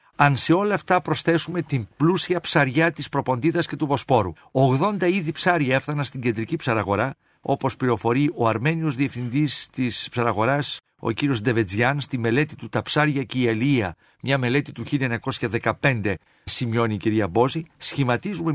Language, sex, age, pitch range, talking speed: Greek, male, 50-69, 120-155 Hz, 150 wpm